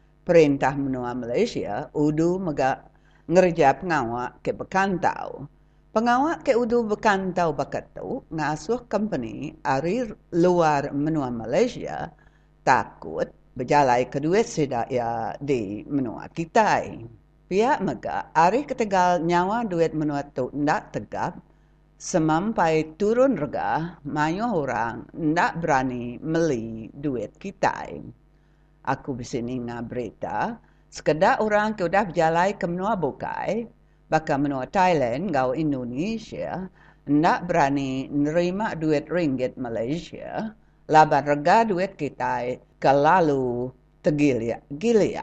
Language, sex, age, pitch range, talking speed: English, female, 50-69, 140-185 Hz, 105 wpm